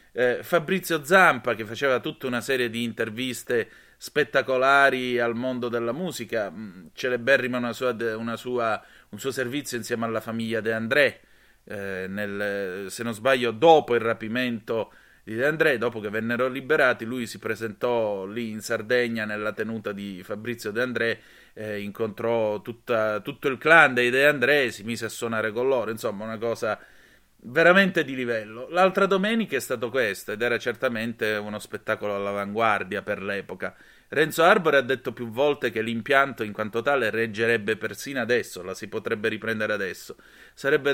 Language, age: Italian, 30-49